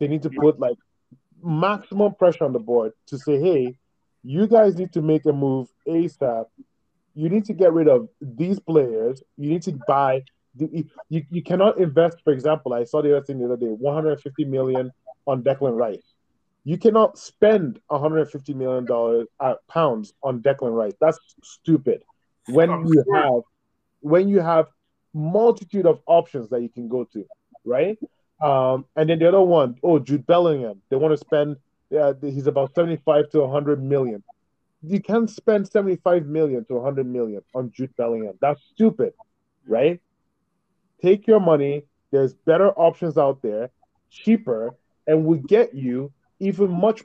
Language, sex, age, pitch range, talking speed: English, male, 20-39, 135-175 Hz, 165 wpm